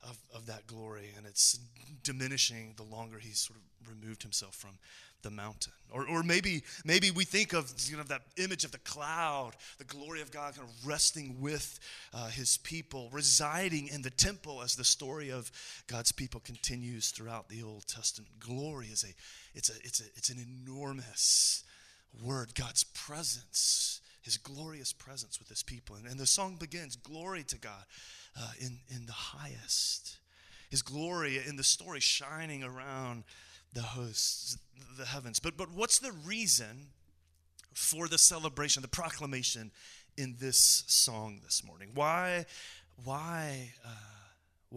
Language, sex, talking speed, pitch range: English, male, 160 wpm, 120-175 Hz